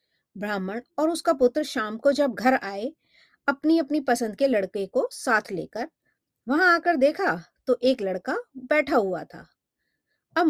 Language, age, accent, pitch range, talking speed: Hindi, 30-49, native, 210-290 Hz, 155 wpm